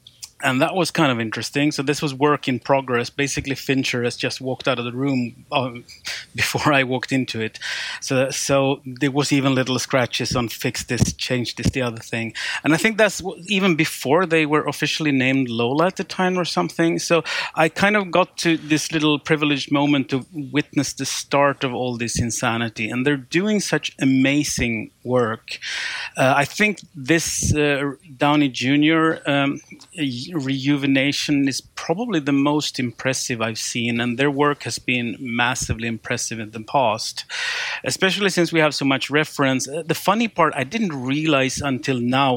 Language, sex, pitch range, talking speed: English, male, 125-155 Hz, 175 wpm